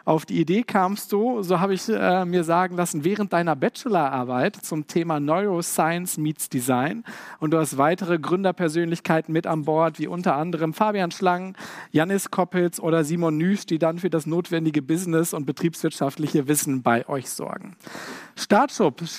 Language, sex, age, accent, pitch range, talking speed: German, male, 50-69, German, 155-190 Hz, 160 wpm